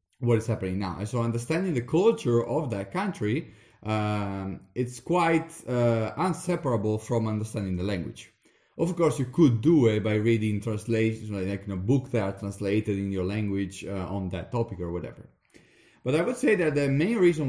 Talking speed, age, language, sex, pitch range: 190 wpm, 30-49, English, male, 105-145 Hz